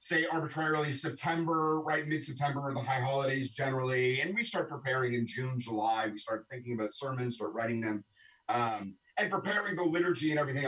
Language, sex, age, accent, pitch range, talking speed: English, male, 30-49, American, 130-175 Hz, 175 wpm